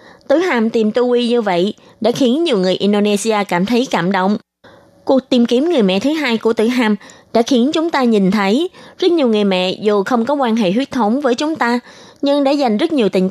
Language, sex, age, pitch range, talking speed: Vietnamese, female, 20-39, 185-255 Hz, 230 wpm